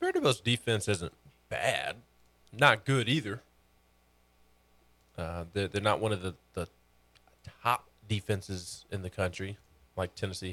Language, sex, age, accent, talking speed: English, male, 20-39, American, 125 wpm